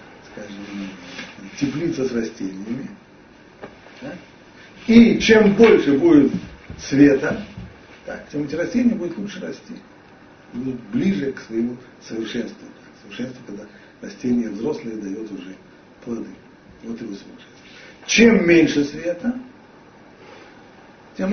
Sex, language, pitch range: male, Russian, 120-180 Hz